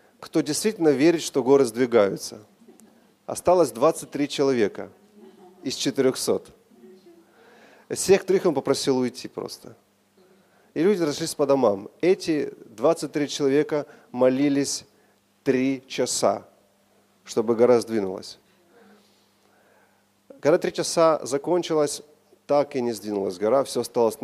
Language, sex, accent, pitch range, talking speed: Russian, male, native, 130-170 Hz, 105 wpm